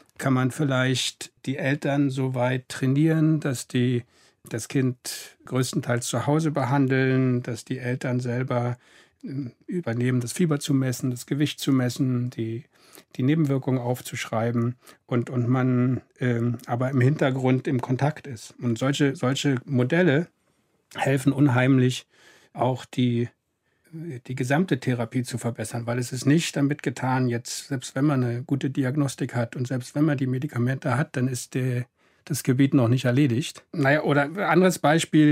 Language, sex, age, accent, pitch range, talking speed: German, male, 60-79, German, 125-150 Hz, 155 wpm